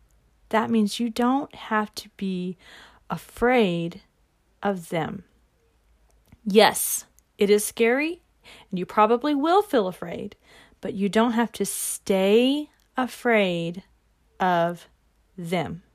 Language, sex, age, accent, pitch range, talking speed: English, female, 40-59, American, 210-295 Hz, 110 wpm